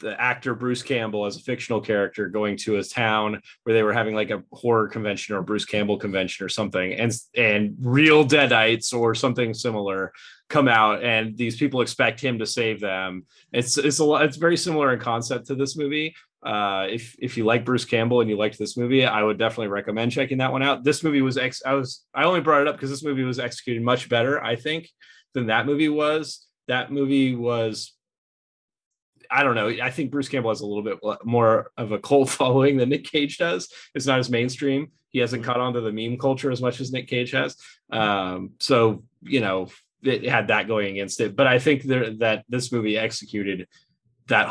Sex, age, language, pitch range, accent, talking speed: male, 30-49, English, 110-135 Hz, American, 210 wpm